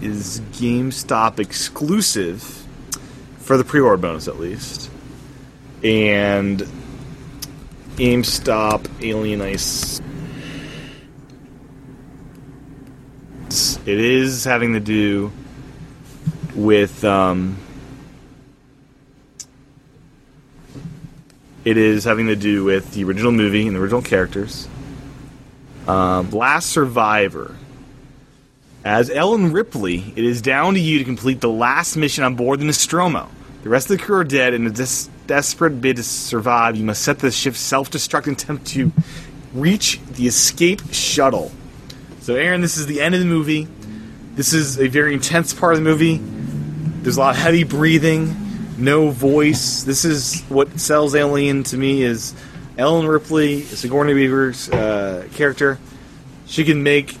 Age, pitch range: 30-49, 120-145 Hz